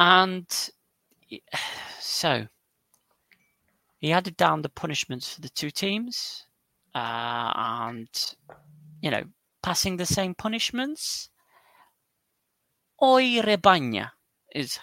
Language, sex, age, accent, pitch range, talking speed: English, male, 30-49, British, 125-190 Hz, 90 wpm